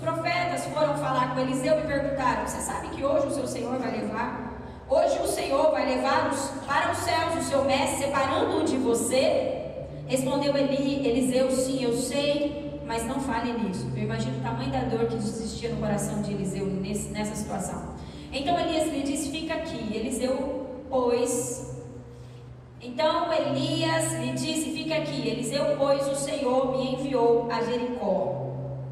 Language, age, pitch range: Portuguese, 20-39, 225-310 Hz